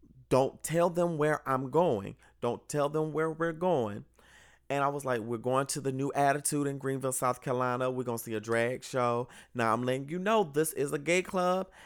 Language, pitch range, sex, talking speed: English, 125-150 Hz, male, 220 wpm